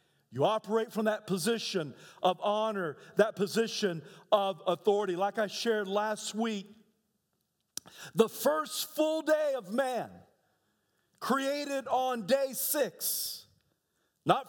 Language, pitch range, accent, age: English, 185-265 Hz, American, 50-69